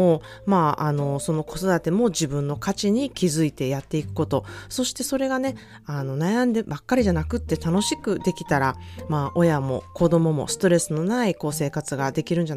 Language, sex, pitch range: Japanese, female, 145-195 Hz